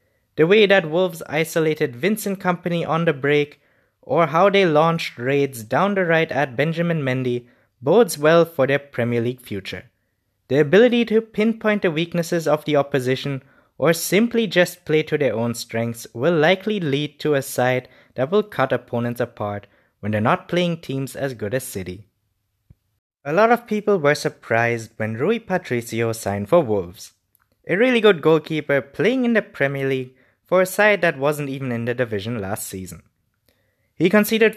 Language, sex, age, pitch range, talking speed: English, male, 20-39, 115-180 Hz, 170 wpm